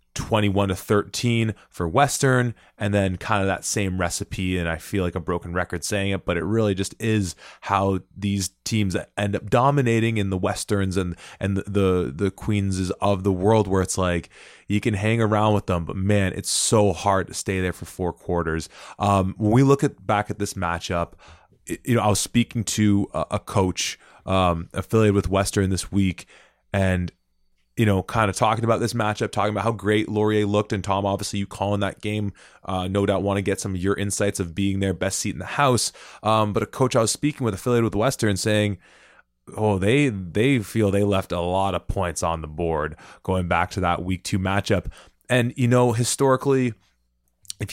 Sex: male